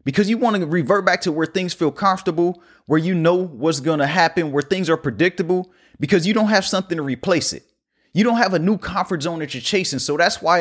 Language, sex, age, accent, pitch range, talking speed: English, male, 30-49, American, 150-190 Hz, 245 wpm